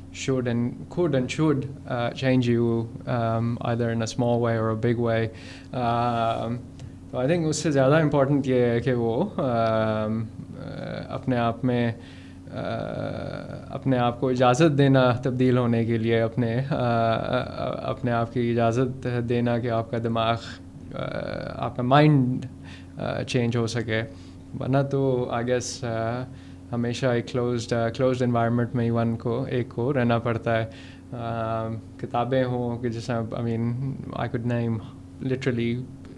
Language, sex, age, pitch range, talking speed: Urdu, male, 20-39, 115-130 Hz, 95 wpm